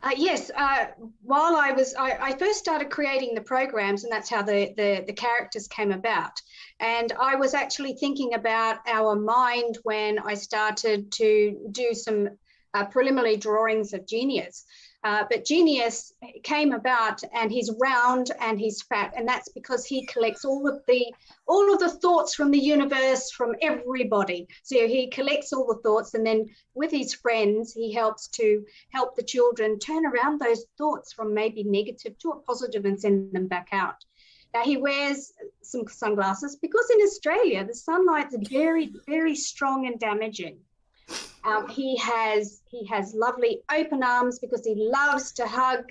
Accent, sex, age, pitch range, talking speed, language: Australian, female, 40-59, 220-285 Hz, 165 wpm, English